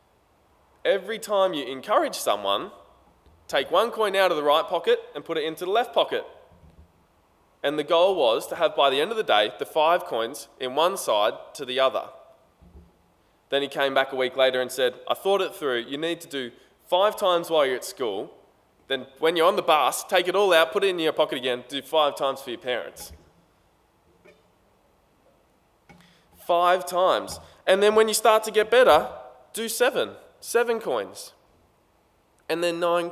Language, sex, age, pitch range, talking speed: English, male, 20-39, 135-195 Hz, 185 wpm